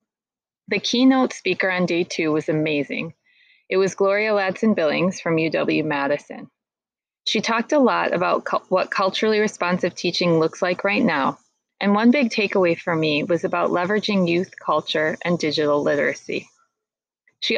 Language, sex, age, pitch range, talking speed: English, female, 30-49, 175-215 Hz, 145 wpm